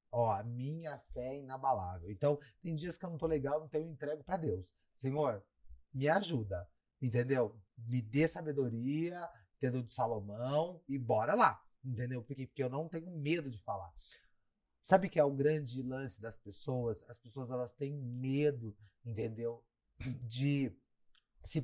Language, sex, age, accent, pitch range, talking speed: Portuguese, male, 40-59, Brazilian, 115-160 Hz, 170 wpm